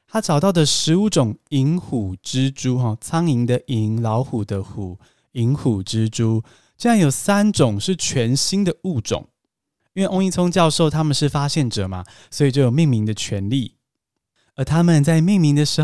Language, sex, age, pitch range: Chinese, male, 20-39, 115-165 Hz